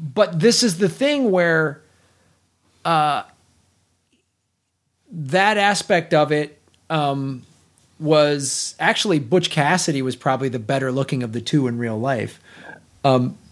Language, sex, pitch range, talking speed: English, male, 135-180 Hz, 125 wpm